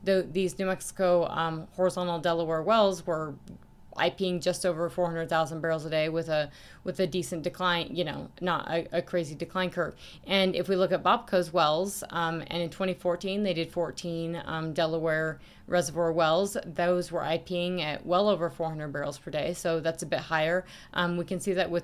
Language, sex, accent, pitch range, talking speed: English, female, American, 160-185 Hz, 190 wpm